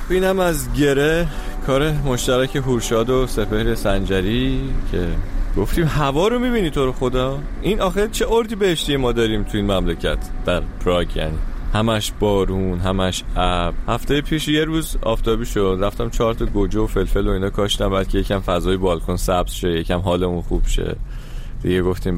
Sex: male